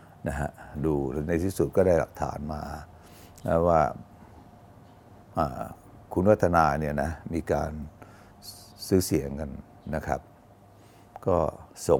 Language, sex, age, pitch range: Thai, male, 60-79, 80-100 Hz